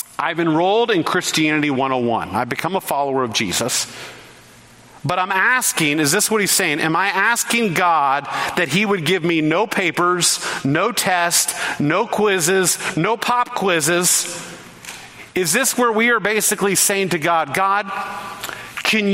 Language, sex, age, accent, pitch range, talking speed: English, male, 40-59, American, 145-200 Hz, 150 wpm